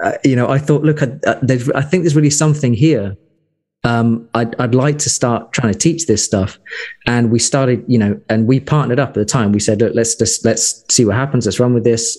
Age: 20-39